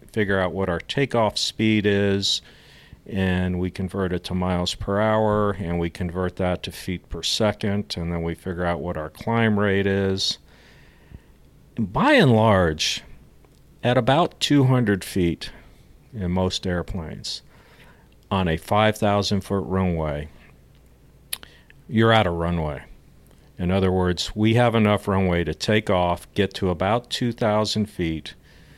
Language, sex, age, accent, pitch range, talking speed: English, male, 50-69, American, 90-110 Hz, 140 wpm